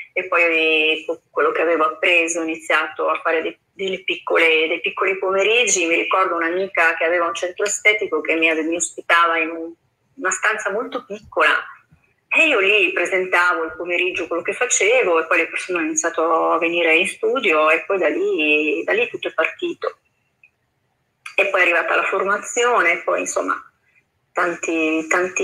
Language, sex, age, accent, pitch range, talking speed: Italian, female, 30-49, native, 165-205 Hz, 160 wpm